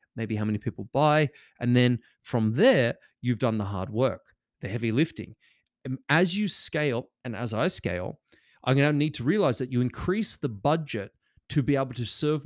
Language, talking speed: English, 195 wpm